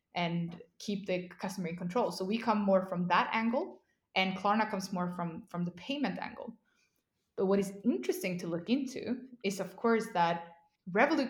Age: 20-39